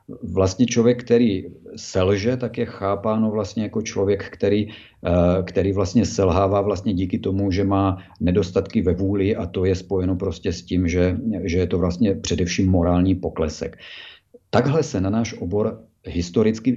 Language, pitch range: Czech, 90-105 Hz